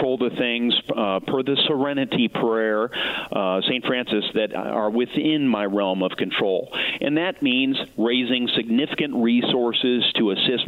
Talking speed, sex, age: 140 wpm, male, 40-59